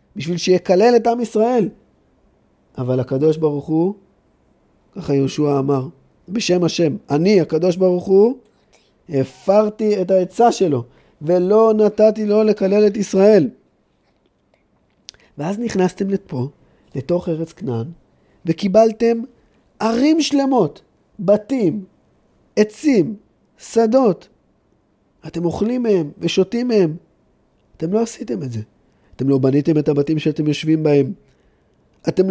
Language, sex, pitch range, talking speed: Hebrew, male, 165-215 Hz, 110 wpm